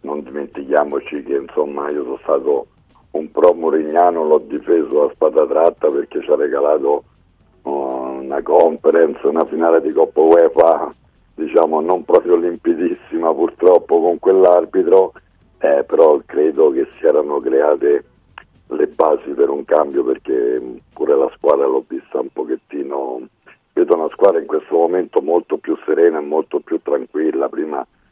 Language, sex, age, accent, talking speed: Italian, male, 60-79, native, 145 wpm